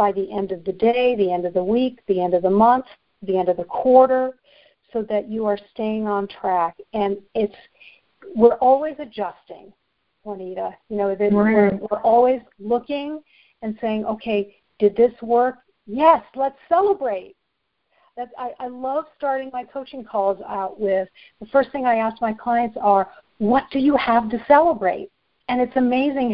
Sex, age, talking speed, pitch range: female, 50-69, 170 wpm, 205-255 Hz